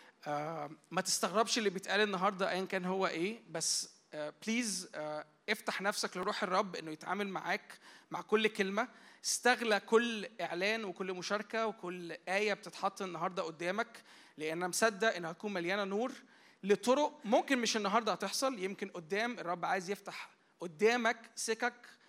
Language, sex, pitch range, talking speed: Arabic, male, 190-240 Hz, 135 wpm